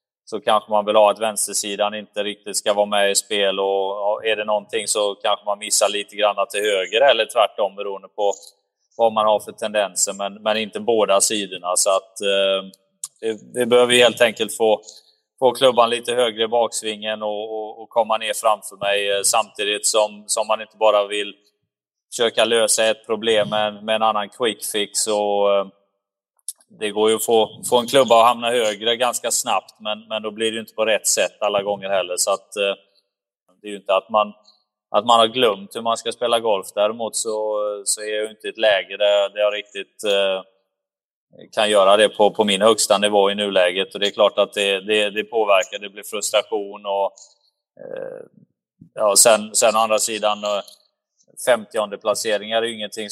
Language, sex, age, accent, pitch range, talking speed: English, male, 20-39, Swedish, 100-110 Hz, 195 wpm